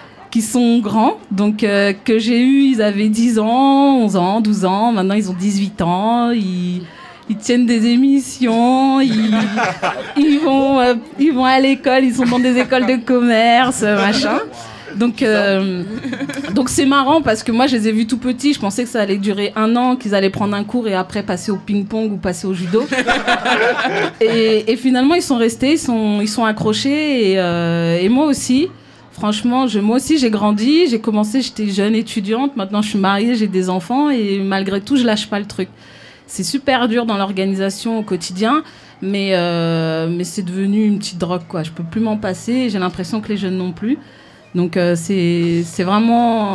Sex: female